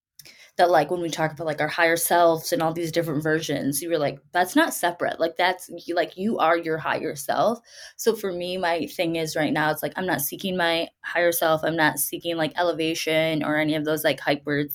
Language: English